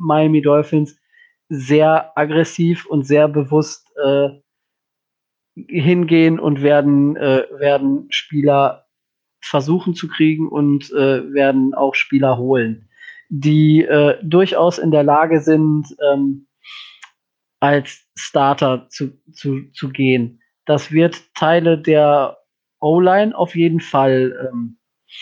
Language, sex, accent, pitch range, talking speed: German, male, German, 140-160 Hz, 110 wpm